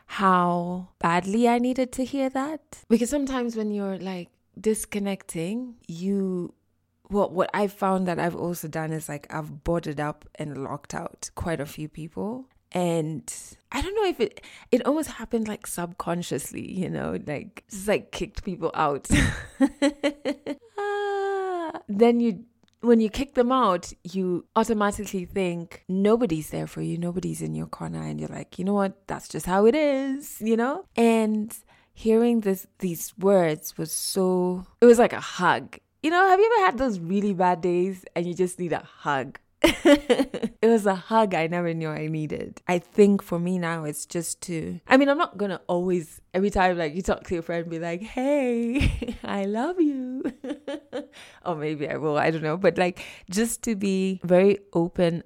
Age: 20-39